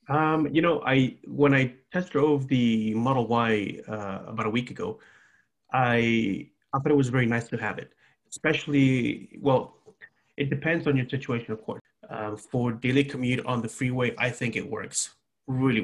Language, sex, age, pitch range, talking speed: English, male, 30-49, 110-135 Hz, 180 wpm